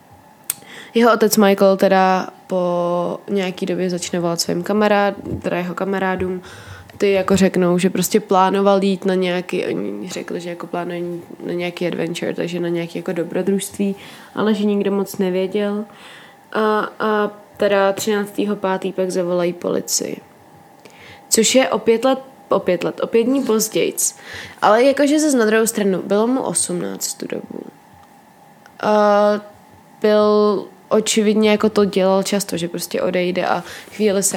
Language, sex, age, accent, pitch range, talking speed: Czech, female, 20-39, native, 185-210 Hz, 140 wpm